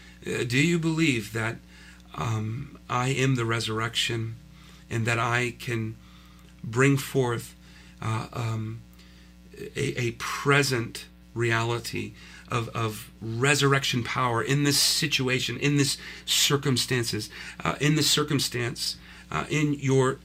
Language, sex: English, male